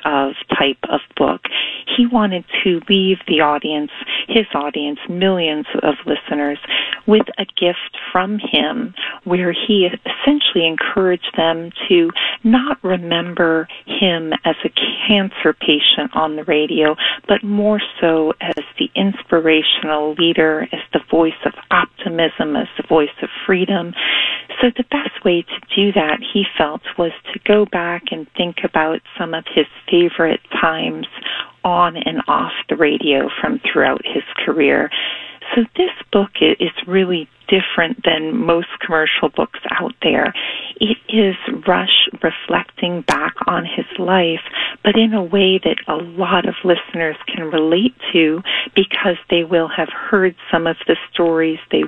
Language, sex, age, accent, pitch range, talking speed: English, female, 40-59, American, 165-200 Hz, 145 wpm